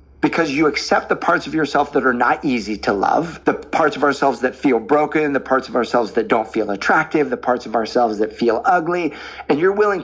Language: English